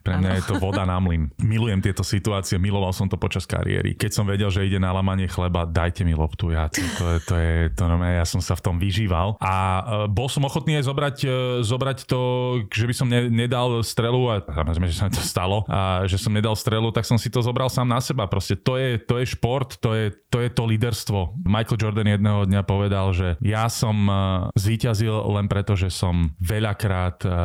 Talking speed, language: 220 wpm, Slovak